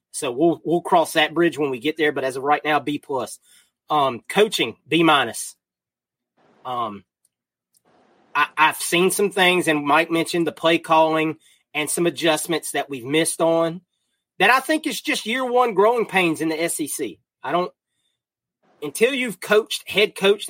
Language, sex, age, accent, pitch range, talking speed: English, male, 30-49, American, 150-185 Hz, 170 wpm